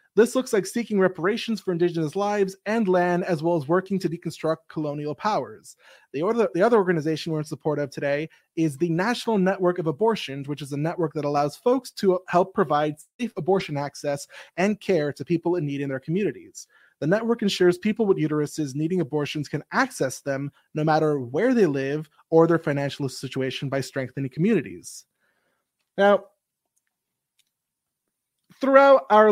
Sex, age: male, 20-39